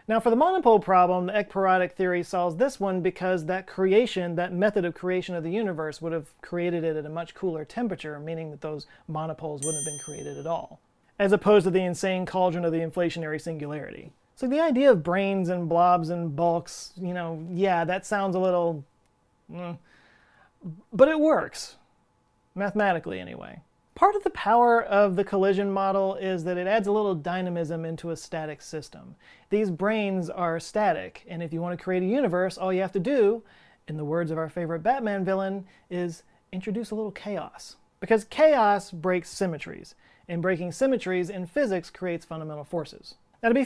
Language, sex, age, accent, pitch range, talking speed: English, male, 30-49, American, 165-195 Hz, 185 wpm